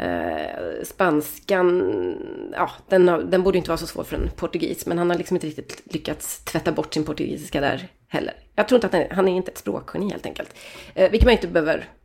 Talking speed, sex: 195 wpm, female